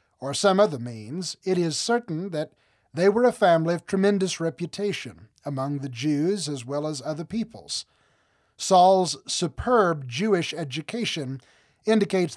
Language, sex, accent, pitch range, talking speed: English, male, American, 140-190 Hz, 135 wpm